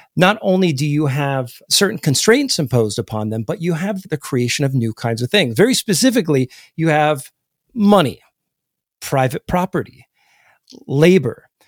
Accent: American